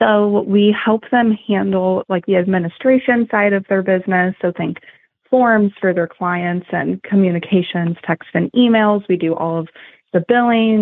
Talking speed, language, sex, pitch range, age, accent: 160 wpm, English, female, 180-220 Hz, 20-39, American